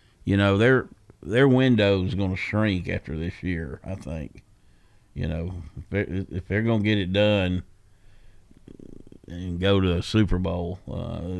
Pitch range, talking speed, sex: 90-105 Hz, 165 wpm, male